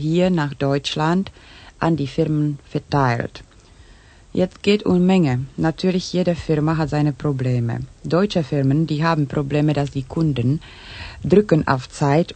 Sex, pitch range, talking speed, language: female, 135-170 Hz, 135 wpm, Ukrainian